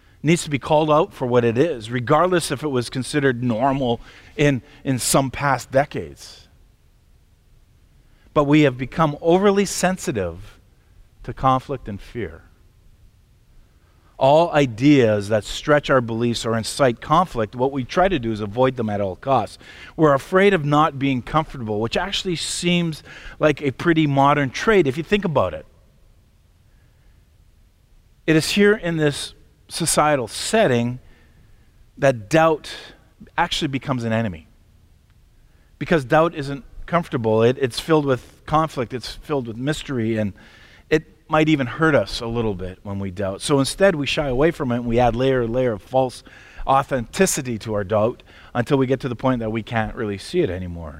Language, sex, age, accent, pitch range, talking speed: English, male, 40-59, American, 105-150 Hz, 165 wpm